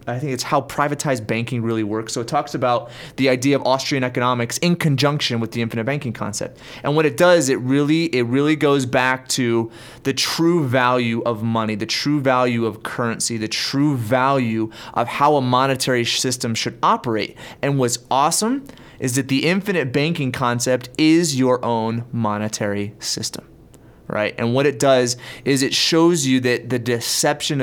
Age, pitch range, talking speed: 30-49, 120-155 Hz, 175 wpm